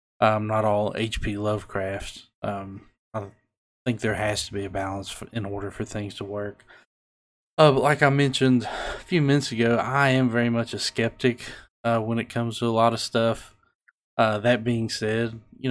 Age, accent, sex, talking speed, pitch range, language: 20-39, American, male, 190 wpm, 105-120 Hz, English